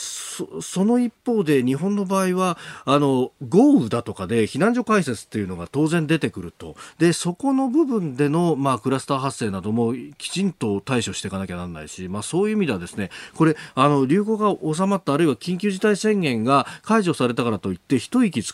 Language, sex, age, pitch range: Japanese, male, 40-59, 110-185 Hz